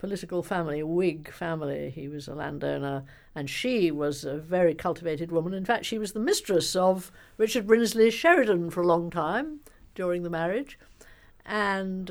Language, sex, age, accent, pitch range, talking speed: English, female, 60-79, British, 160-205 Hz, 170 wpm